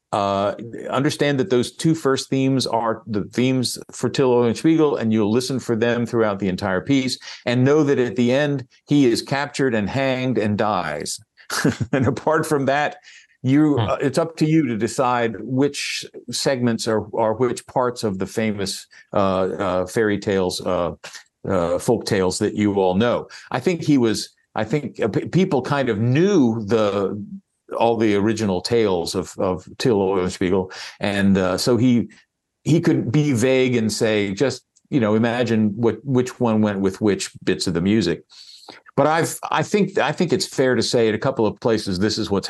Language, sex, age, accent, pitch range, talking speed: English, male, 50-69, American, 100-135 Hz, 185 wpm